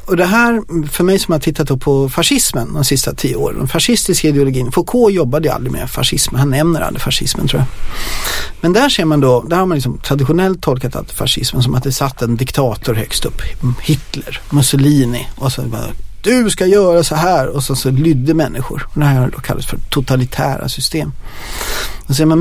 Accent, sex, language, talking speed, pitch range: Swedish, male, English, 200 wpm, 130-160 Hz